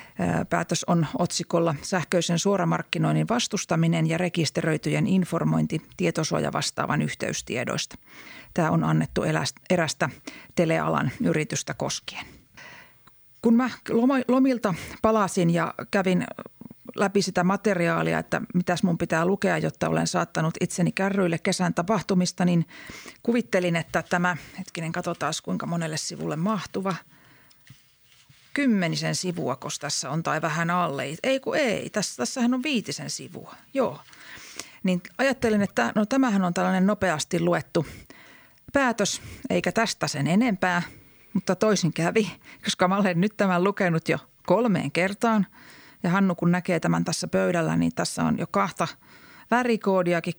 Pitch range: 160-200 Hz